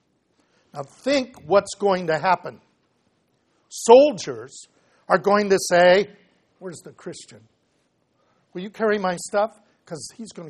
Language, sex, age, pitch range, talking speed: English, male, 60-79, 165-220 Hz, 120 wpm